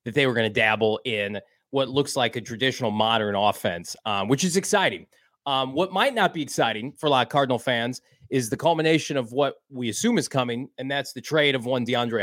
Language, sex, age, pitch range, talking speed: English, male, 30-49, 130-165 Hz, 225 wpm